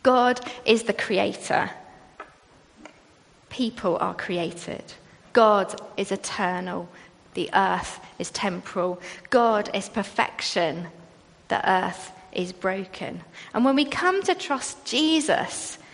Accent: British